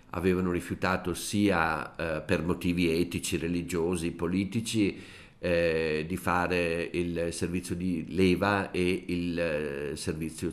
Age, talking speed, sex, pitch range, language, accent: 50-69, 110 wpm, male, 80-95 Hz, Italian, native